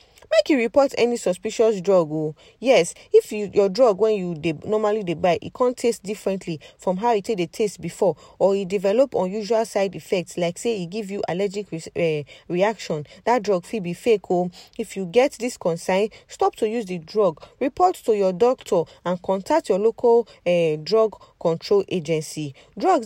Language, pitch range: English, 175-235 Hz